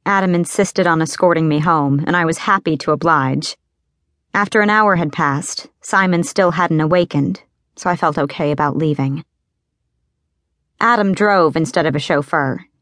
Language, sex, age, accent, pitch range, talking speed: English, female, 30-49, American, 140-180 Hz, 155 wpm